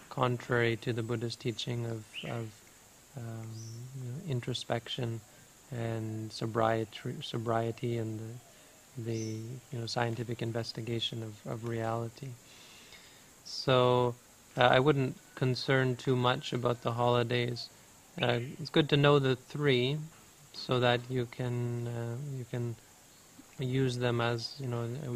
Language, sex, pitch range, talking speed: English, male, 115-130 Hz, 130 wpm